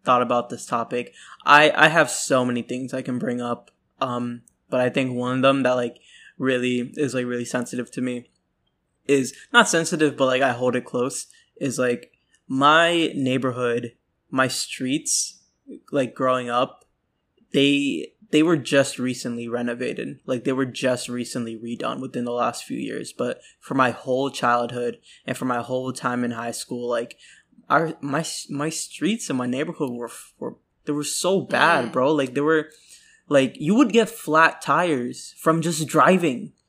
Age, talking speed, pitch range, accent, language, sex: 20-39, 170 wpm, 125-150 Hz, American, English, male